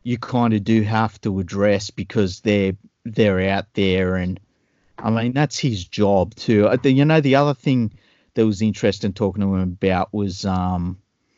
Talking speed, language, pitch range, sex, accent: 175 wpm, English, 100-120 Hz, male, Australian